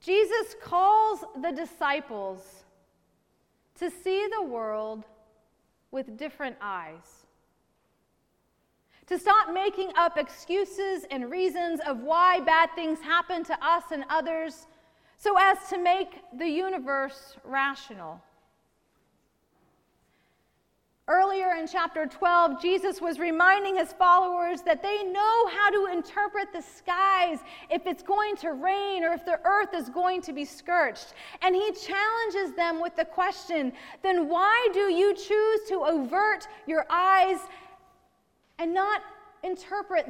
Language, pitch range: English, 320-390 Hz